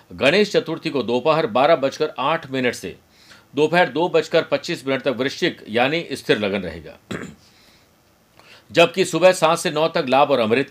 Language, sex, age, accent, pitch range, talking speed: Hindi, male, 50-69, native, 130-170 Hz, 165 wpm